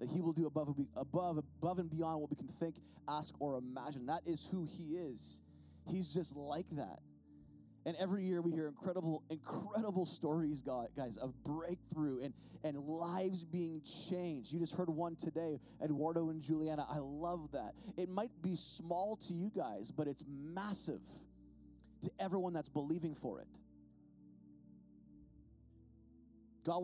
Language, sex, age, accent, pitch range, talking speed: English, male, 20-39, American, 125-175 Hz, 155 wpm